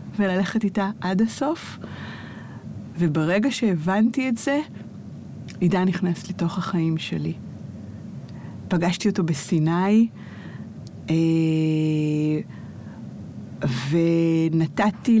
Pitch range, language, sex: 170-225 Hz, Hebrew, female